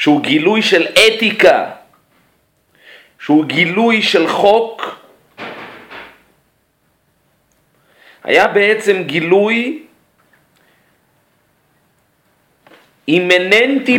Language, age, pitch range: Hebrew, 40-59, 155-220 Hz